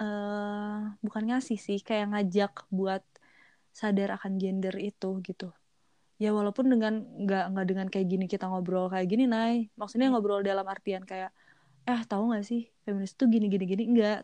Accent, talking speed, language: native, 170 wpm, Indonesian